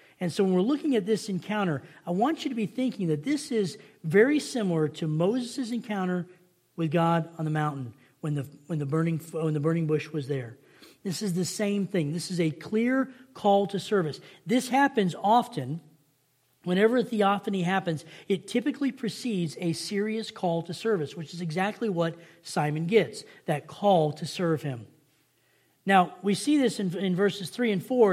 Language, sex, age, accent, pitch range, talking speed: English, male, 40-59, American, 155-210 Hz, 175 wpm